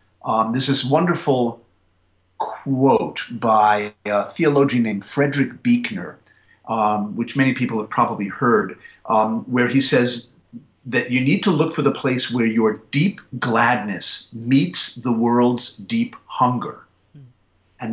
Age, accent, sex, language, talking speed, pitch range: 50-69, American, male, English, 135 wpm, 110-145 Hz